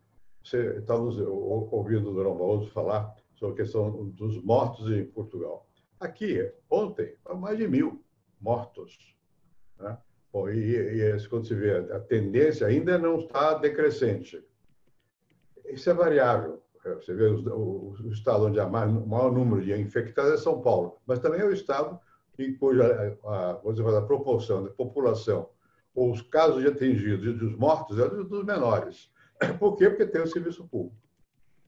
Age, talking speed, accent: 60-79, 155 wpm, Brazilian